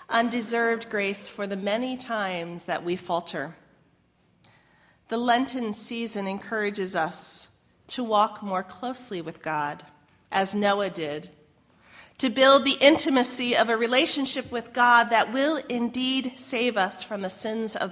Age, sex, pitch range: 40-59, female, 185-245 Hz